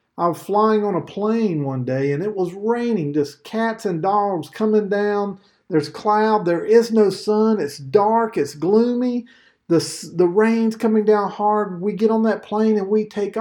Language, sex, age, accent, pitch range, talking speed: English, male, 50-69, American, 175-225 Hz, 190 wpm